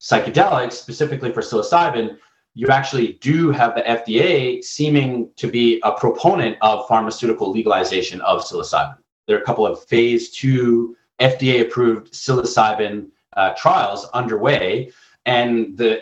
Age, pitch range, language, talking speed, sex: 30-49, 110-140 Hz, English, 130 wpm, male